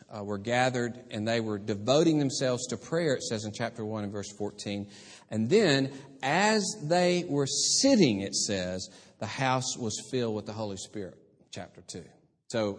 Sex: male